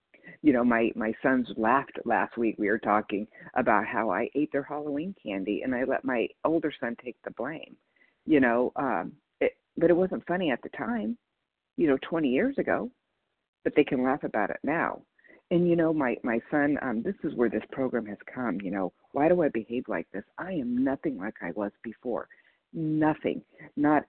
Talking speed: 200 wpm